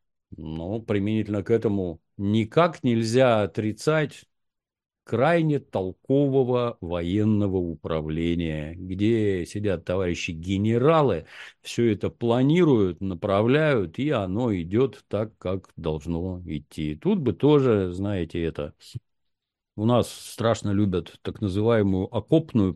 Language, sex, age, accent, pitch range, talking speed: Russian, male, 50-69, native, 85-115 Hz, 100 wpm